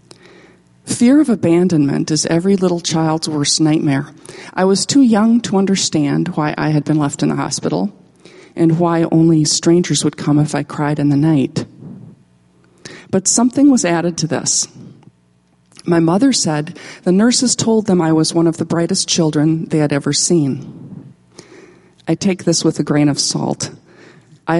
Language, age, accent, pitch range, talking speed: English, 40-59, American, 150-190 Hz, 165 wpm